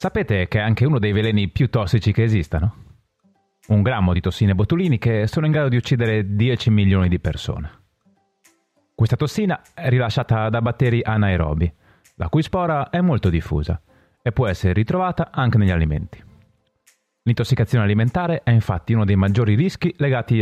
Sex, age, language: male, 30-49, Italian